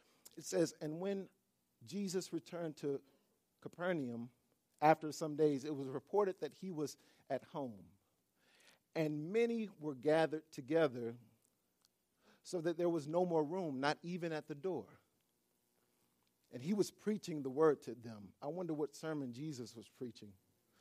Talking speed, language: 145 wpm, English